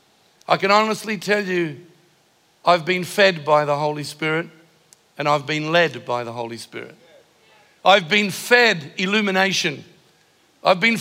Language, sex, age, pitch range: English, male, 50-69, 165-215 Hz